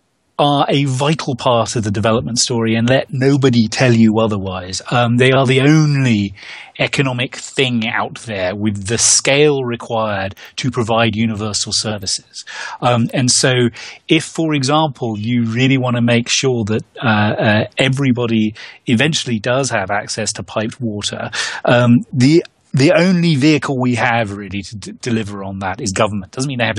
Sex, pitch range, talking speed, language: male, 110-135 Hz, 165 wpm, English